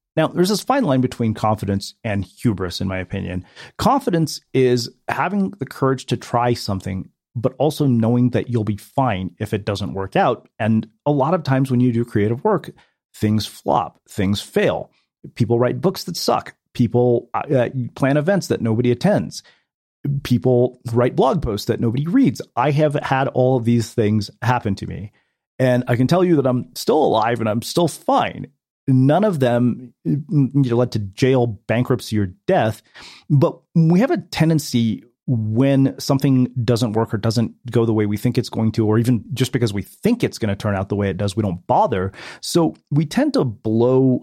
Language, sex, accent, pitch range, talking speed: English, male, American, 110-145 Hz, 190 wpm